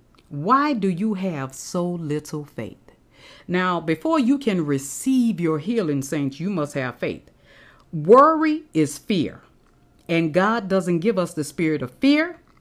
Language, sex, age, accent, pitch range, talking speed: English, female, 40-59, American, 160-225 Hz, 150 wpm